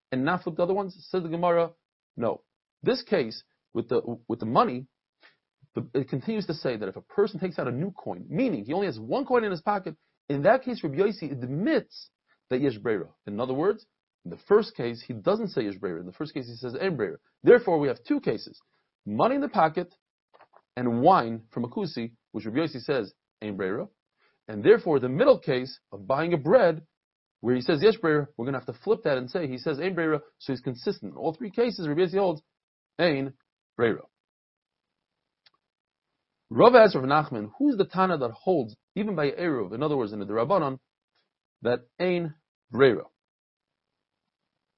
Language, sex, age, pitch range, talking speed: English, male, 40-59, 135-190 Hz, 190 wpm